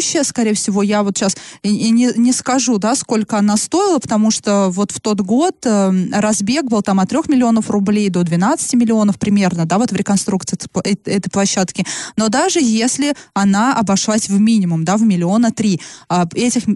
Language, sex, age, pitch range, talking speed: Russian, female, 20-39, 195-235 Hz, 185 wpm